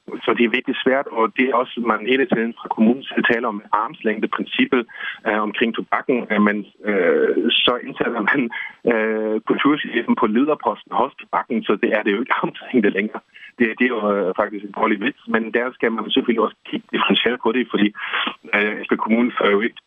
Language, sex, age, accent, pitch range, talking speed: Danish, male, 30-49, native, 105-120 Hz, 205 wpm